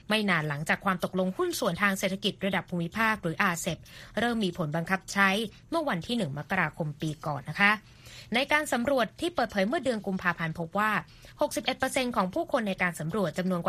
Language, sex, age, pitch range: Thai, female, 20-39, 165-220 Hz